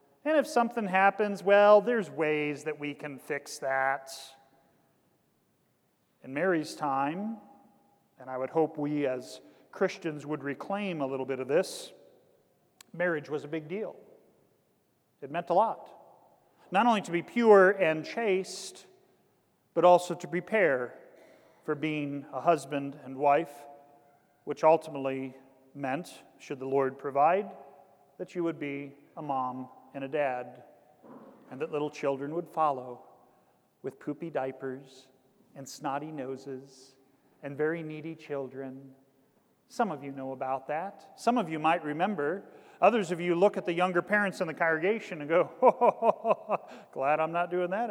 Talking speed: 150 wpm